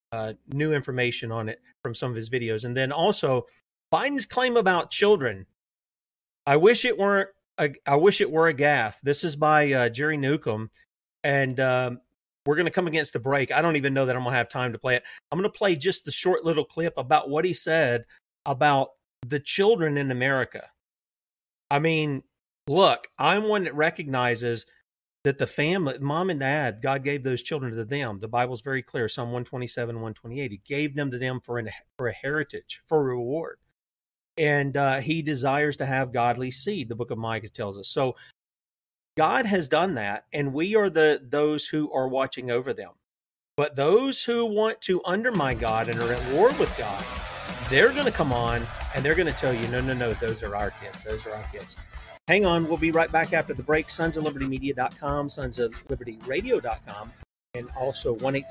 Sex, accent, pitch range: male, American, 120-160 Hz